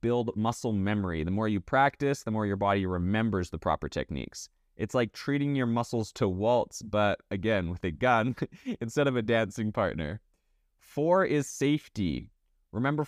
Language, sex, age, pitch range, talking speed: English, male, 20-39, 100-130 Hz, 165 wpm